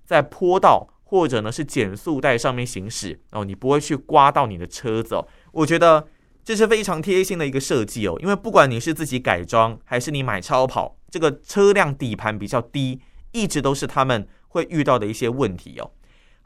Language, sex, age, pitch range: Chinese, male, 30-49, 115-175 Hz